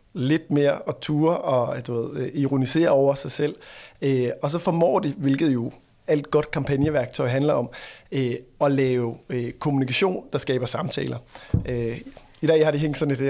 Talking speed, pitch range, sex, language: 165 wpm, 130-150 Hz, male, Danish